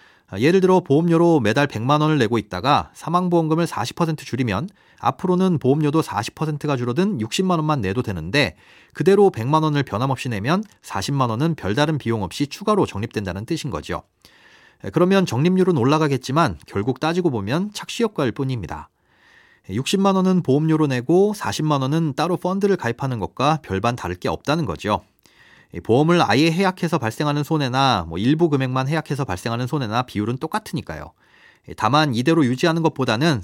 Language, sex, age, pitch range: Korean, male, 30-49, 115-160 Hz